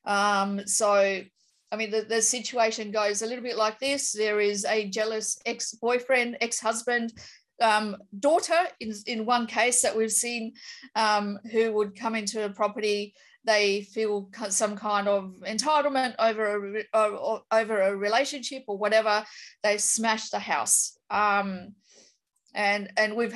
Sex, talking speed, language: female, 145 wpm, English